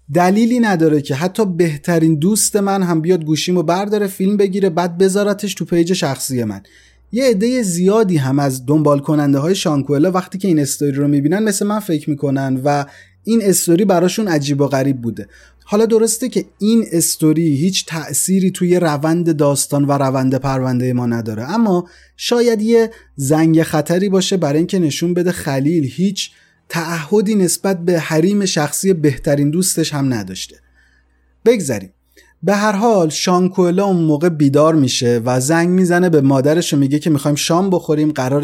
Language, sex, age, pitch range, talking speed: Persian, male, 30-49, 140-190 Hz, 160 wpm